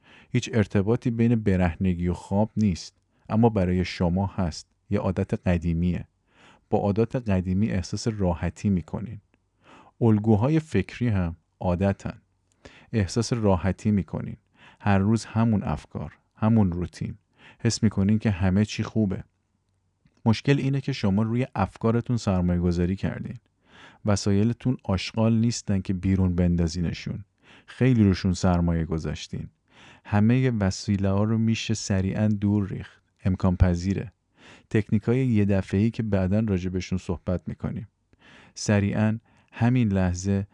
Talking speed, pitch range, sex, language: 120 wpm, 95-110 Hz, male, Persian